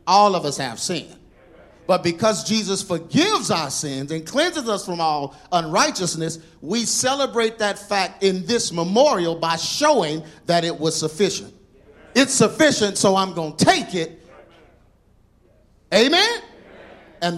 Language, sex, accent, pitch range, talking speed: English, male, American, 165-255 Hz, 140 wpm